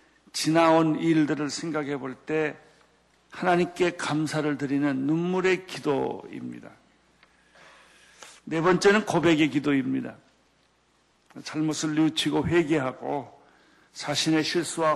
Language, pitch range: Korean, 145-175 Hz